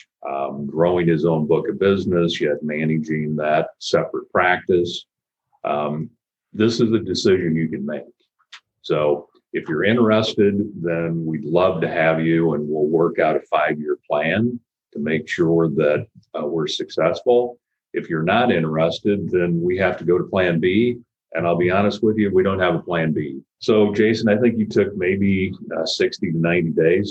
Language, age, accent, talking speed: English, 50-69, American, 175 wpm